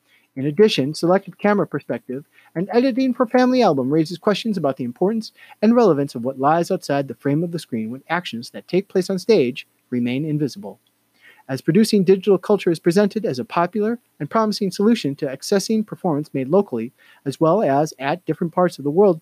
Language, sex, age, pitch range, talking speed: English, male, 30-49, 135-205 Hz, 190 wpm